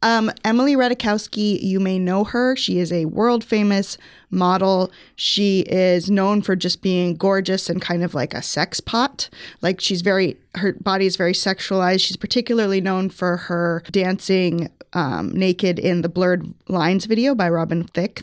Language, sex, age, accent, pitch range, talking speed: English, female, 20-39, American, 180-205 Hz, 170 wpm